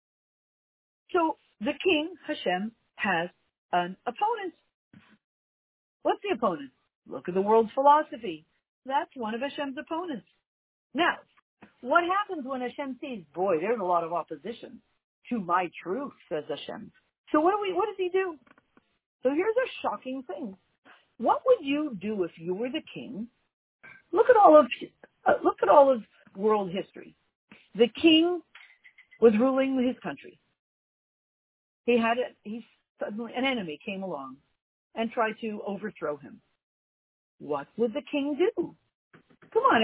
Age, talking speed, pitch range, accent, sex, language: 50-69, 145 wpm, 195-310 Hz, American, female, English